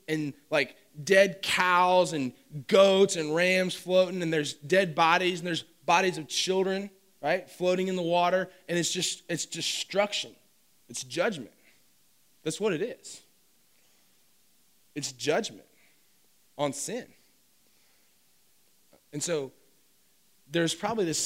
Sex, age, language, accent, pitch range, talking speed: male, 20-39, English, American, 130-170 Hz, 120 wpm